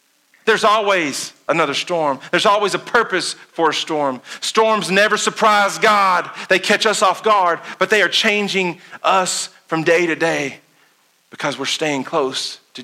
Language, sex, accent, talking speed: English, male, American, 160 wpm